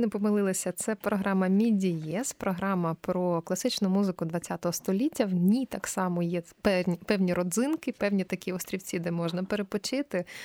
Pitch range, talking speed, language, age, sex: 180-225 Hz, 140 wpm, Ukrainian, 20-39, female